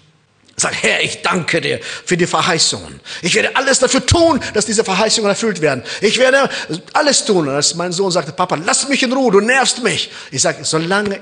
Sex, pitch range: male, 145-230 Hz